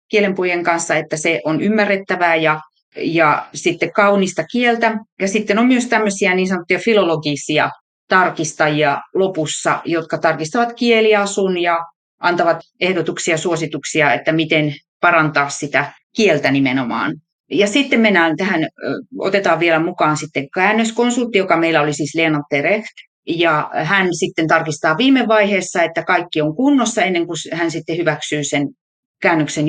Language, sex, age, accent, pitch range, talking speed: Finnish, female, 30-49, native, 160-210 Hz, 135 wpm